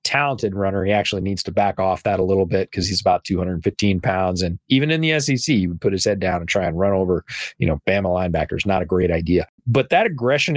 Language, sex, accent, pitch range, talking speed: English, male, American, 100-130 Hz, 250 wpm